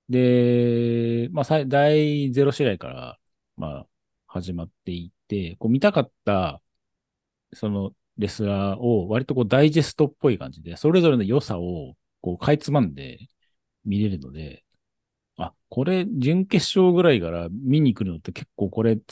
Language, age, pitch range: Japanese, 40-59, 95-135 Hz